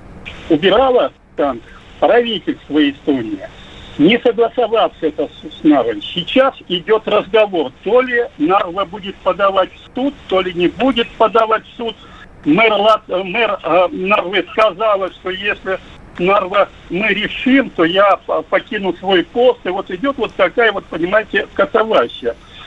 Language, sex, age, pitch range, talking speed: Russian, male, 60-79, 185-240 Hz, 130 wpm